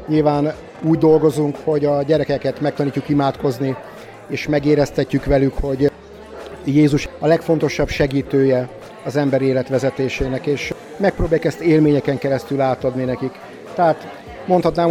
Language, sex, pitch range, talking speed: Hungarian, male, 135-150 Hz, 115 wpm